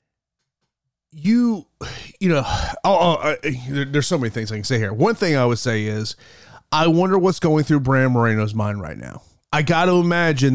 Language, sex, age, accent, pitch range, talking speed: English, male, 30-49, American, 130-170 Hz, 195 wpm